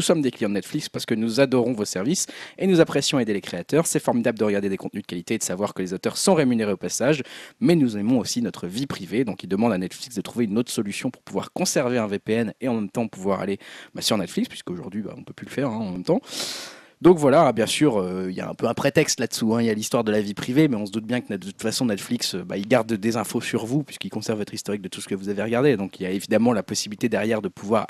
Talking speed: 300 wpm